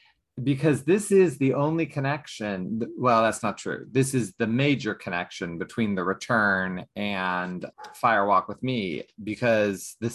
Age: 30-49